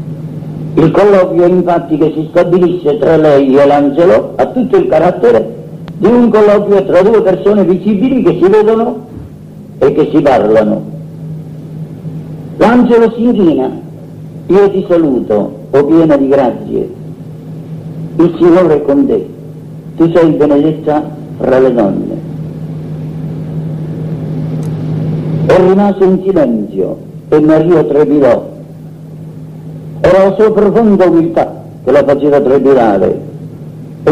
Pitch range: 155-185 Hz